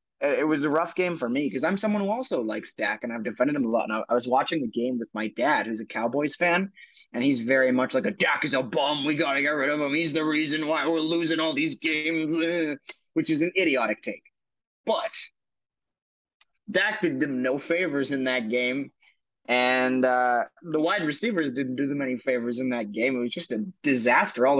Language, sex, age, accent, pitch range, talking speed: English, male, 20-39, American, 125-175 Hz, 225 wpm